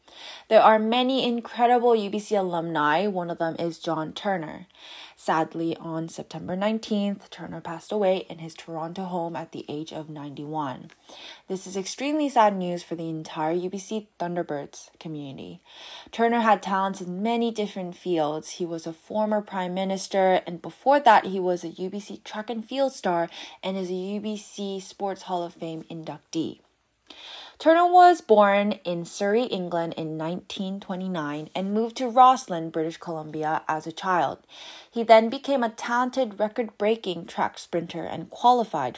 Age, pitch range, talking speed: 10-29, 170-225 Hz, 150 wpm